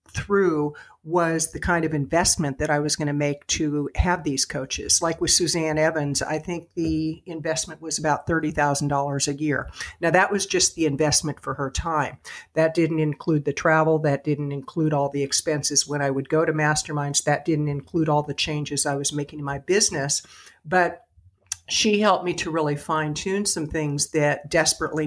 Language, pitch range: English, 145-170 Hz